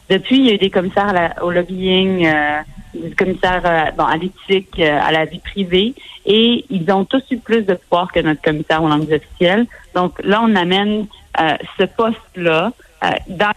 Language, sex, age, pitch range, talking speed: French, female, 30-49, 170-205 Hz, 180 wpm